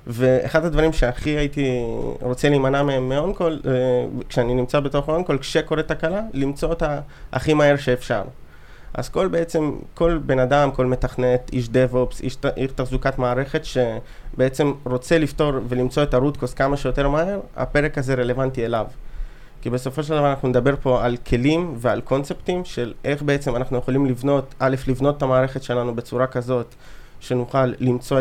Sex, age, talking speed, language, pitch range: male, 20-39, 155 wpm, Hebrew, 125-145 Hz